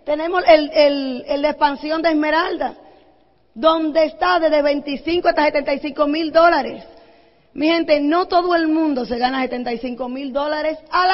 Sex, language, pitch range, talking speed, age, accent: female, Spanish, 285-345 Hz, 150 wpm, 20-39, American